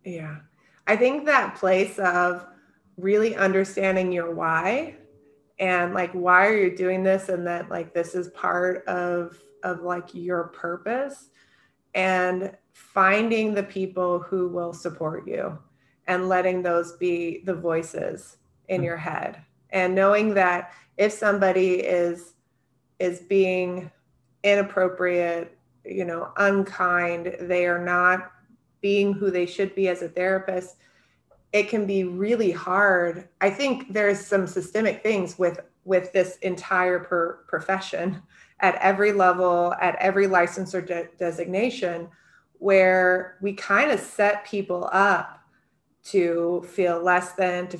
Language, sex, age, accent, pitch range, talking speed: English, female, 20-39, American, 175-195 Hz, 130 wpm